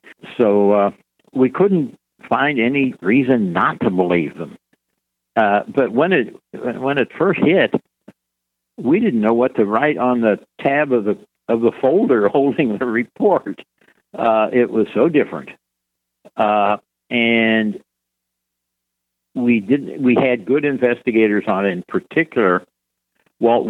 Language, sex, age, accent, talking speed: English, male, 60-79, American, 135 wpm